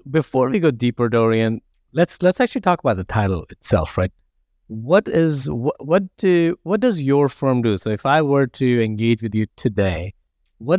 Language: English